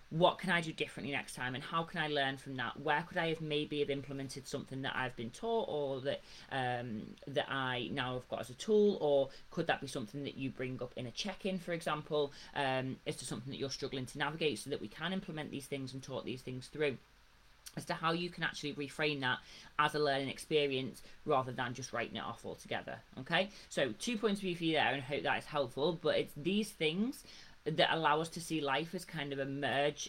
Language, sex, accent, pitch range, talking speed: English, female, British, 135-160 Hz, 240 wpm